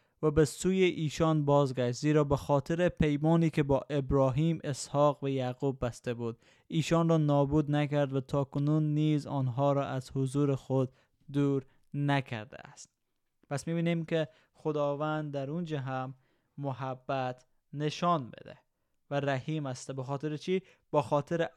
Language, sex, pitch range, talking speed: Persian, male, 130-155 Hz, 140 wpm